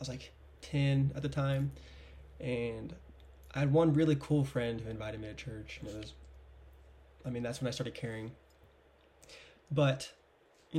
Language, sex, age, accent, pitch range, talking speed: English, male, 20-39, American, 115-140 Hz, 170 wpm